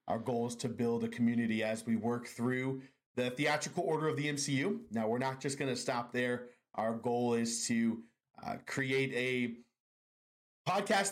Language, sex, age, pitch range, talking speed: English, male, 30-49, 115-130 Hz, 180 wpm